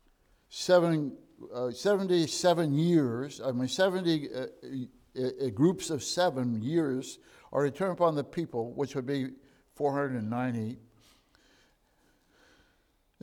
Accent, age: American, 60-79